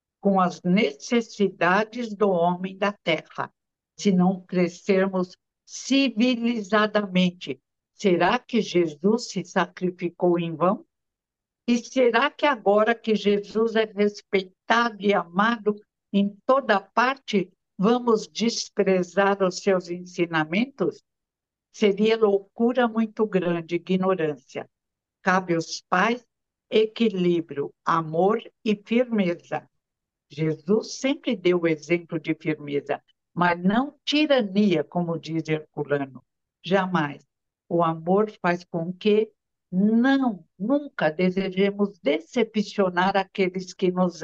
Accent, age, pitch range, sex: Brazilian, 60-79, 175-215 Hz, female